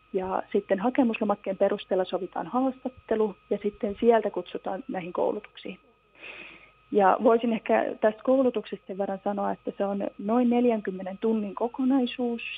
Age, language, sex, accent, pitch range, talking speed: 30-49, Finnish, female, native, 200-240 Hz, 125 wpm